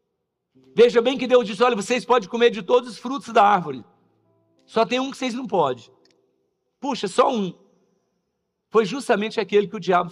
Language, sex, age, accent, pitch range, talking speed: Portuguese, male, 50-69, Brazilian, 160-245 Hz, 185 wpm